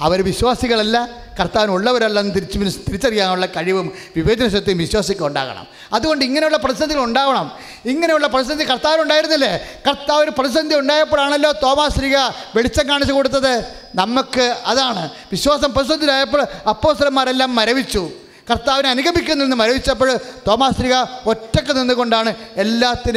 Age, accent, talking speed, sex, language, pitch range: 30-49, Indian, 115 wpm, male, English, 190-265 Hz